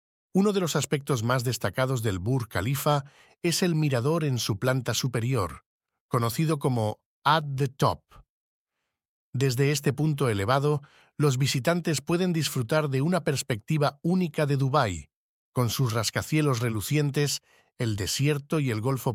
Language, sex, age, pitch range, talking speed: Spanish, male, 50-69, 125-150 Hz, 140 wpm